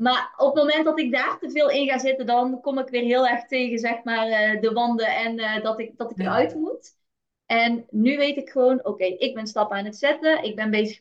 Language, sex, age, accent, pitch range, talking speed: Dutch, female, 20-39, Dutch, 205-245 Hz, 260 wpm